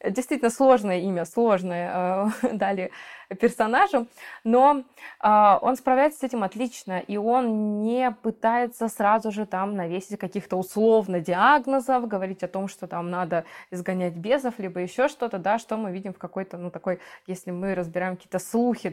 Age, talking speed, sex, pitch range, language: 20-39, 150 wpm, female, 190-240 Hz, Russian